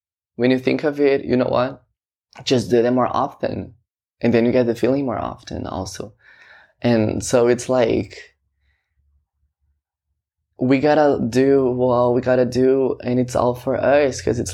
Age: 20-39